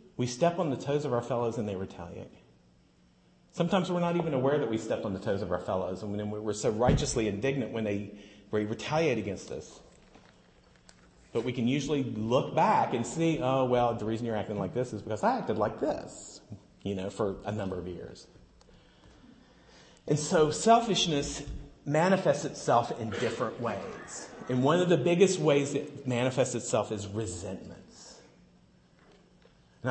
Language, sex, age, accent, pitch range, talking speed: English, male, 40-59, American, 110-155 Hz, 170 wpm